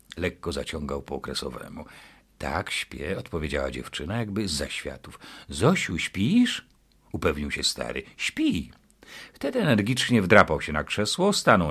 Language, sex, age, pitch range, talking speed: Polish, male, 50-69, 75-125 Hz, 125 wpm